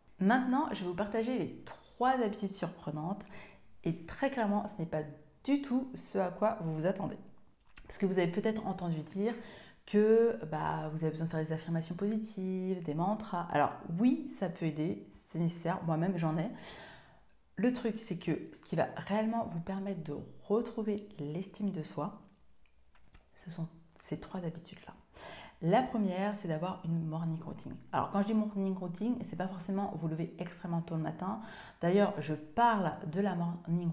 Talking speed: 175 wpm